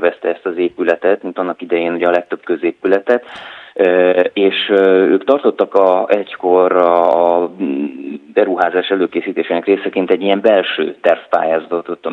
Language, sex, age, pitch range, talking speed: Hungarian, male, 30-49, 85-100 Hz, 130 wpm